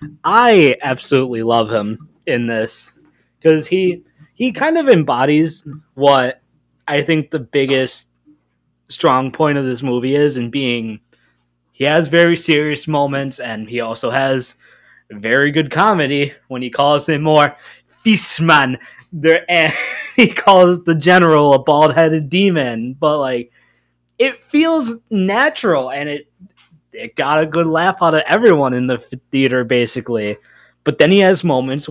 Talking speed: 145 wpm